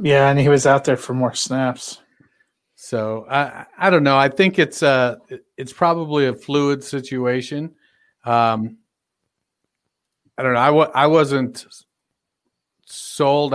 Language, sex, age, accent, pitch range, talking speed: English, male, 50-69, American, 120-145 Hz, 140 wpm